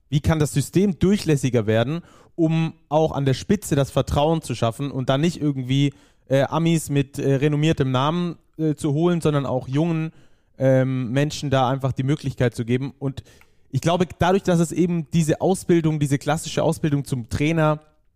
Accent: German